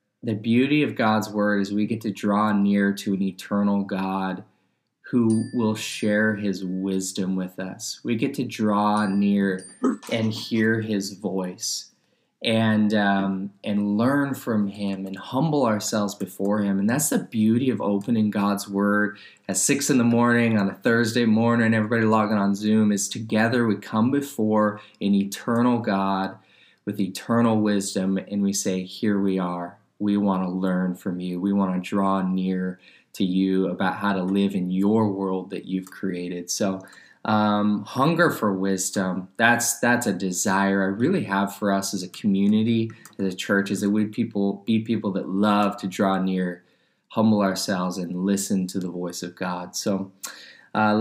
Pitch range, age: 95-110 Hz, 20-39